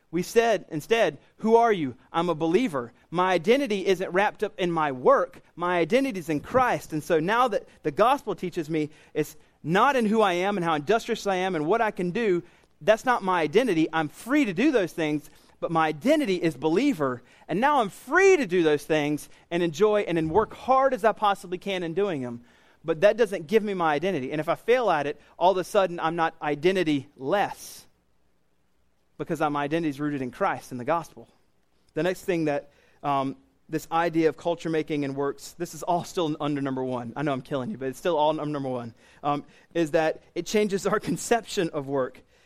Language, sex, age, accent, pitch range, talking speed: English, male, 30-49, American, 150-210 Hz, 215 wpm